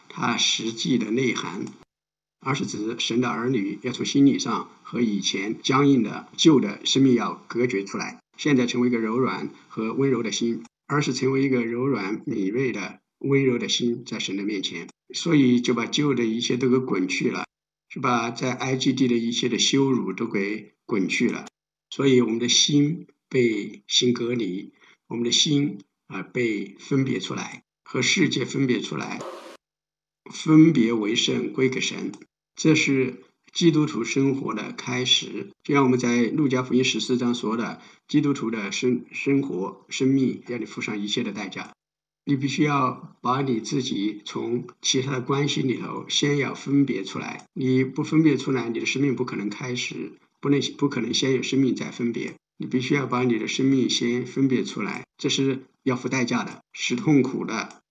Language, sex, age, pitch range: English, male, 50-69, 120-140 Hz